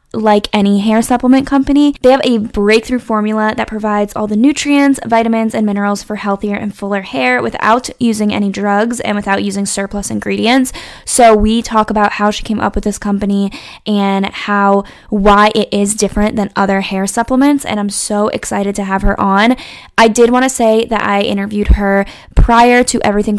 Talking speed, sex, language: 185 wpm, female, English